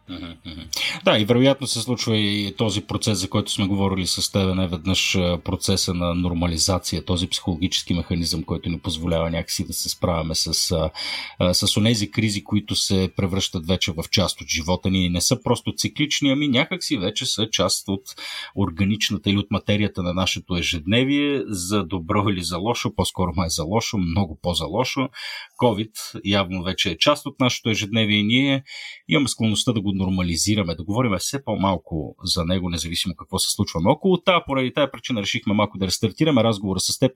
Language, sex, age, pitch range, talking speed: Bulgarian, male, 40-59, 95-125 Hz, 175 wpm